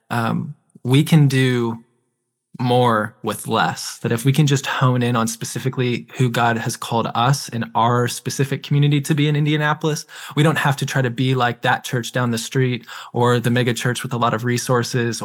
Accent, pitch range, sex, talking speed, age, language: American, 120-135 Hz, male, 200 wpm, 20-39, English